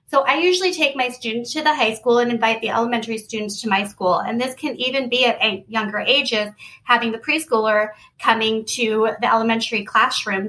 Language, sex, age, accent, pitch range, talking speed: English, female, 30-49, American, 220-275 Hz, 200 wpm